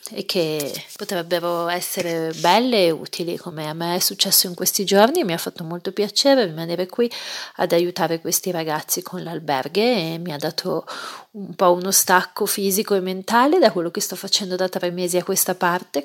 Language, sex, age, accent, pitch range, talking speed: Italian, female, 30-49, native, 175-205 Hz, 185 wpm